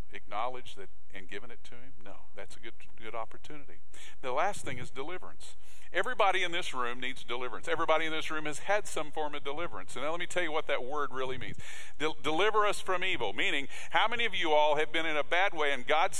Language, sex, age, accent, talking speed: English, male, 50-69, American, 235 wpm